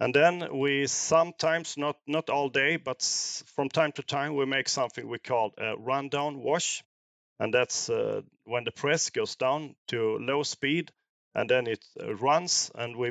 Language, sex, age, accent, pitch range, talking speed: English, male, 40-59, Swedish, 125-165 Hz, 175 wpm